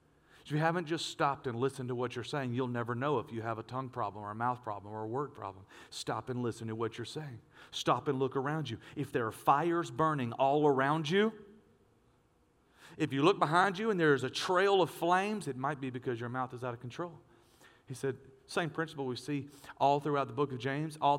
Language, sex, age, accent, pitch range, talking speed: English, male, 40-59, American, 120-150 Hz, 230 wpm